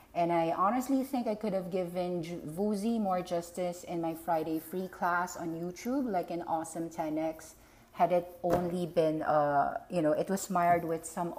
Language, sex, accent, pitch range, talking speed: English, female, Filipino, 160-190 Hz, 180 wpm